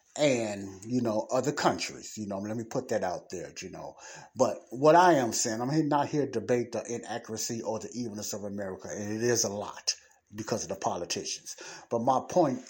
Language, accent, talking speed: English, American, 210 wpm